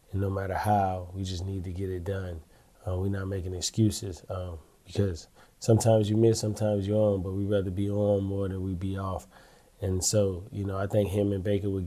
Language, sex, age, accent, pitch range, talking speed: English, male, 20-39, American, 95-105 Hz, 215 wpm